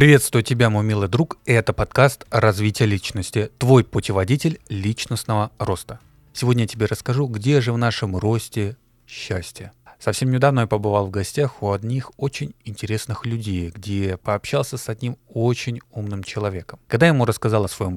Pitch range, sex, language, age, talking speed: 105-135 Hz, male, Russian, 20-39, 155 wpm